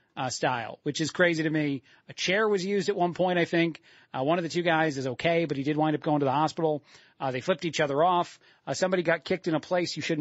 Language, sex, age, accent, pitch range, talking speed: English, male, 40-59, American, 145-180 Hz, 280 wpm